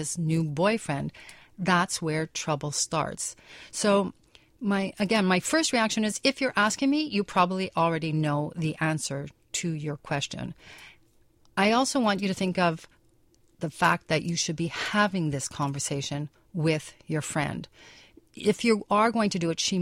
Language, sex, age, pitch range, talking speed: English, female, 40-59, 155-190 Hz, 165 wpm